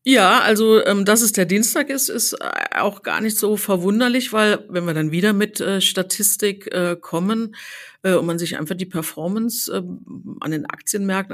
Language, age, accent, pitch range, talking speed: German, 50-69, German, 170-210 Hz, 190 wpm